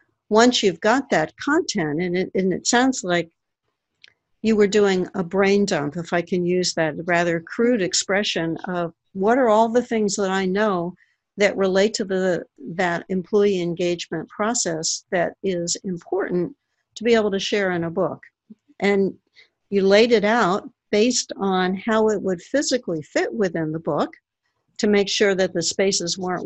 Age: 60-79